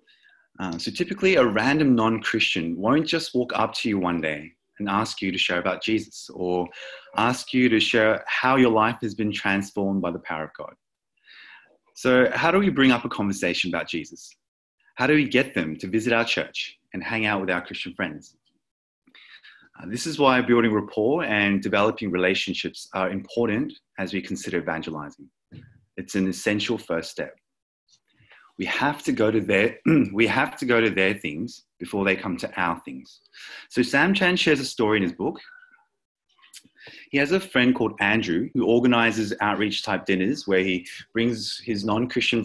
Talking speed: 180 wpm